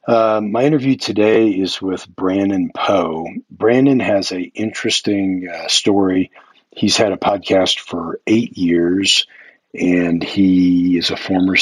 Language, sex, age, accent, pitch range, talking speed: English, male, 50-69, American, 85-100 Hz, 130 wpm